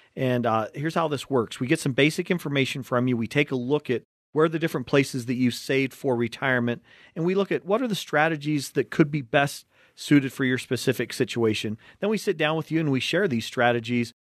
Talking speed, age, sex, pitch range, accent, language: 235 wpm, 40-59, male, 125-150 Hz, American, English